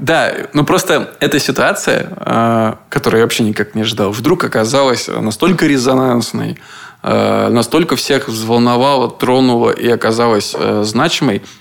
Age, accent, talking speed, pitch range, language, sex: 20-39, native, 115 wpm, 110-130 Hz, Russian, male